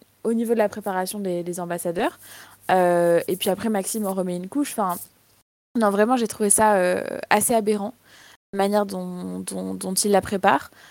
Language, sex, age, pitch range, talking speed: French, female, 20-39, 190-230 Hz, 185 wpm